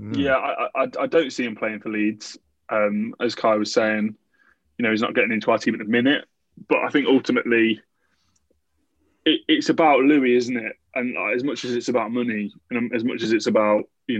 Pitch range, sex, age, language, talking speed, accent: 110-130 Hz, male, 20-39, English, 215 wpm, British